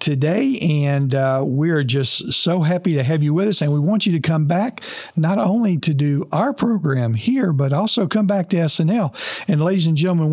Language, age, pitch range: English, 50-69, 135-180 Hz